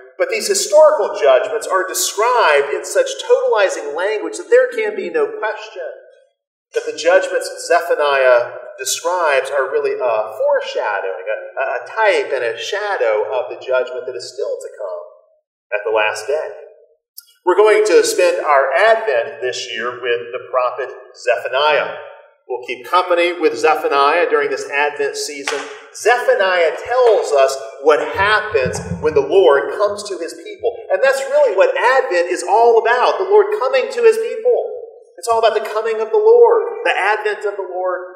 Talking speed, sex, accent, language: 160 wpm, male, American, English